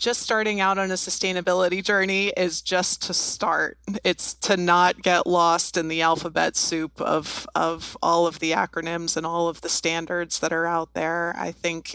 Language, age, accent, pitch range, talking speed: English, 30-49, American, 160-175 Hz, 185 wpm